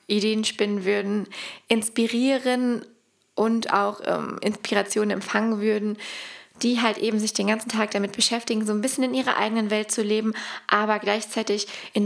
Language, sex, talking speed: German, female, 155 wpm